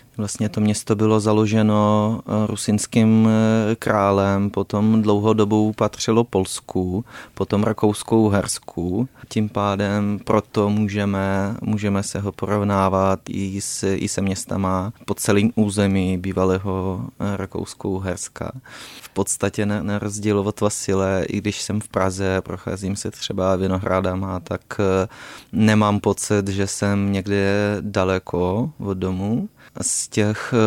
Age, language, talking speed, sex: 20-39, Czech, 115 wpm, male